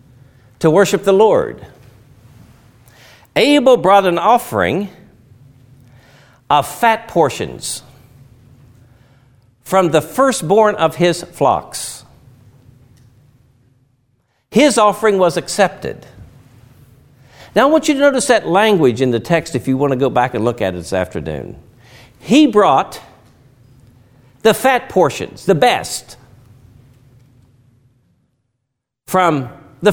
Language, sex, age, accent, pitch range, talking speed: English, male, 60-79, American, 125-195 Hz, 105 wpm